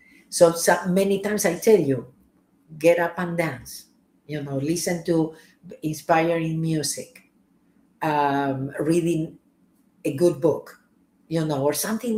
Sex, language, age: female, English, 50-69